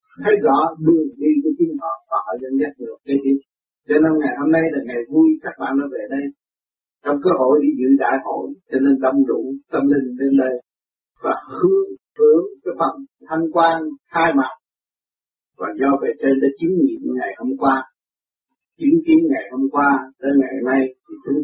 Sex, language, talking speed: male, Vietnamese, 200 wpm